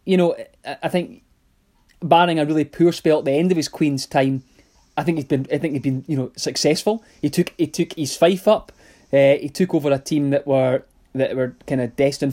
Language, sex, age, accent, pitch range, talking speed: English, male, 20-39, British, 140-170 Hz, 235 wpm